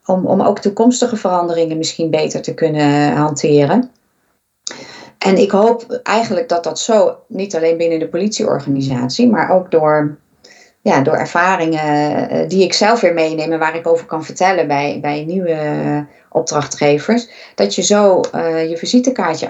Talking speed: 150 wpm